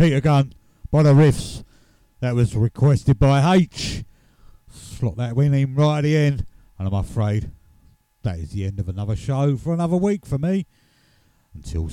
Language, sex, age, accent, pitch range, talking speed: English, male, 50-69, British, 95-130 Hz, 165 wpm